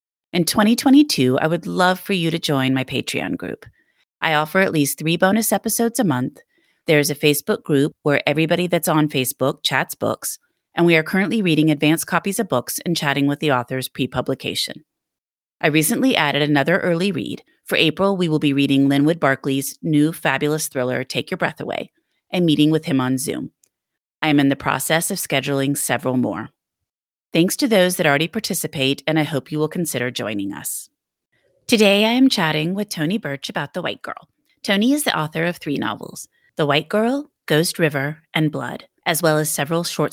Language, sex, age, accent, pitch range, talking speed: English, female, 30-49, American, 145-185 Hz, 190 wpm